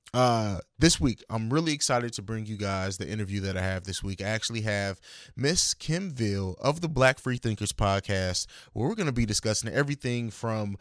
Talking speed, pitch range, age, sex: 200 wpm, 110-150 Hz, 20-39, male